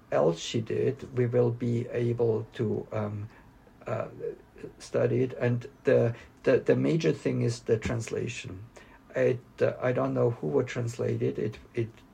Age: 50-69